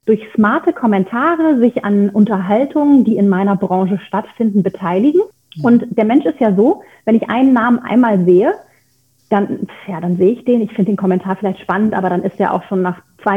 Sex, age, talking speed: female, 30-49, 195 wpm